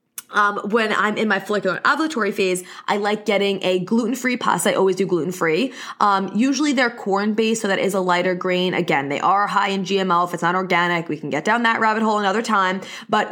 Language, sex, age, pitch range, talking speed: English, female, 20-39, 185-230 Hz, 220 wpm